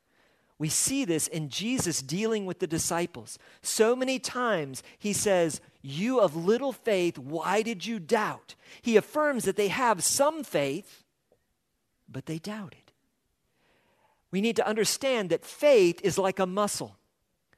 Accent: American